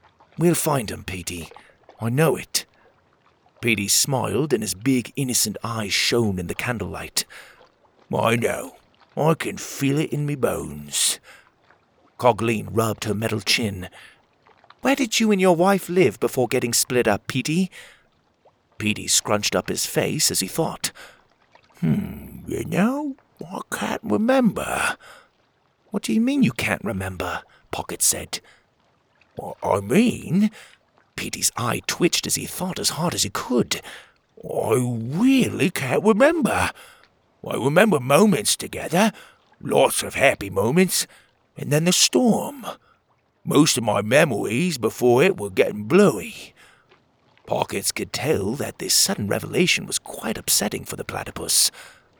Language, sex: English, male